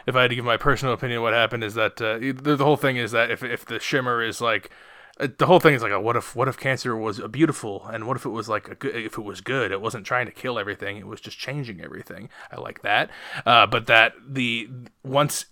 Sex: male